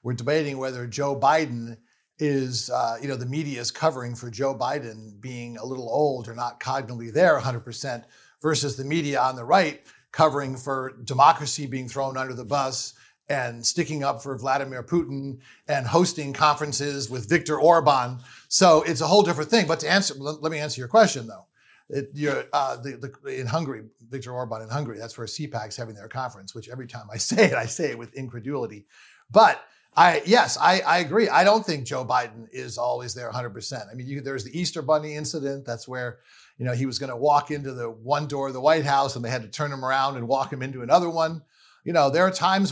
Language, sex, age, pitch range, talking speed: English, male, 50-69, 125-155 Hz, 210 wpm